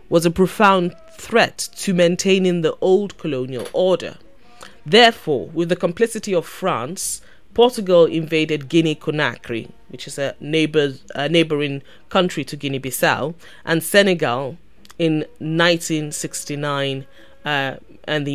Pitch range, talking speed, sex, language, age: 145-185 Hz, 110 wpm, female, English, 30-49